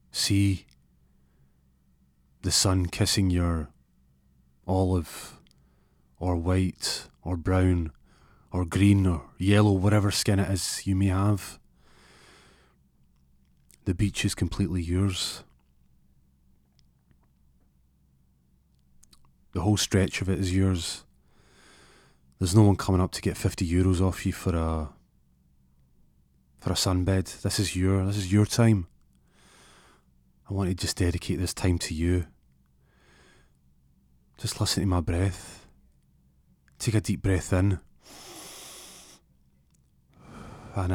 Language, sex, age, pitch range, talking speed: English, male, 30-49, 65-95 Hz, 110 wpm